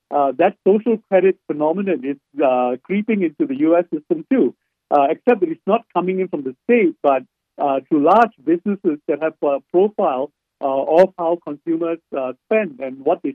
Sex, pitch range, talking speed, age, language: male, 145-195 Hz, 185 wpm, 60-79, English